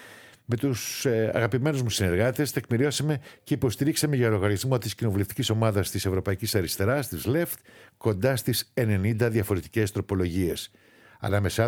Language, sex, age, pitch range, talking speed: Greek, male, 60-79, 100-120 Hz, 130 wpm